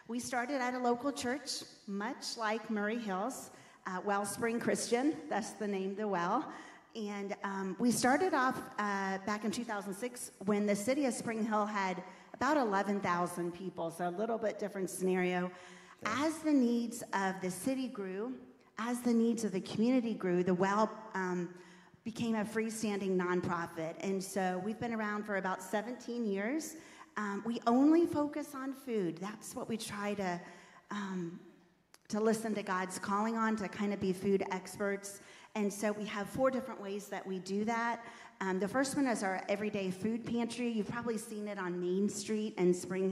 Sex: female